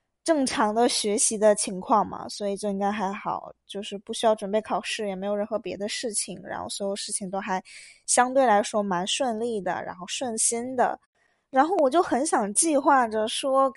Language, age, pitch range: Chinese, 20-39, 205-265 Hz